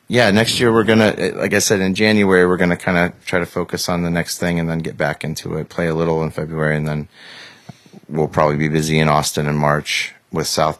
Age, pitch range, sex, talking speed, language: 30-49, 80-95 Hz, male, 245 wpm, English